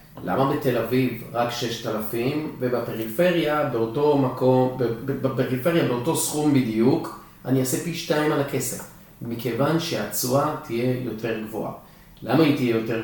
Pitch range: 115-155 Hz